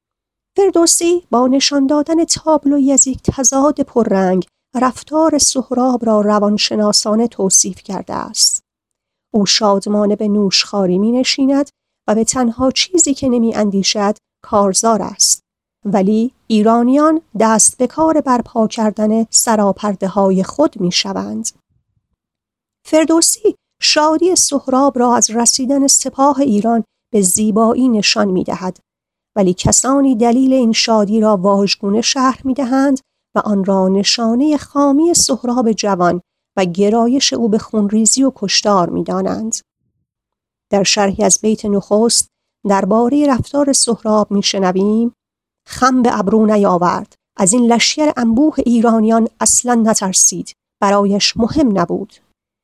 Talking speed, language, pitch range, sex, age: 115 wpm, Persian, 205-265 Hz, female, 40-59